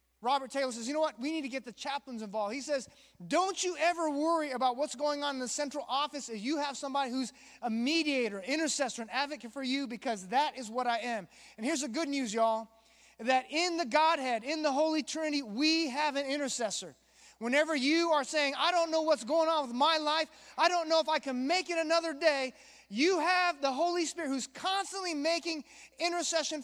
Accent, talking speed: American, 215 wpm